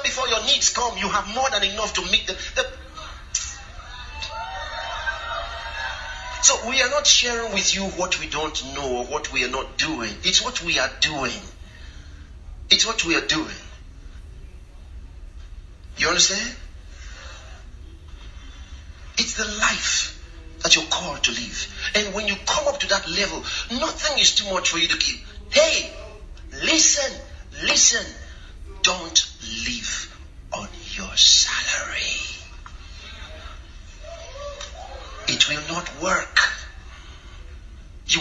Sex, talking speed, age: male, 125 wpm, 40-59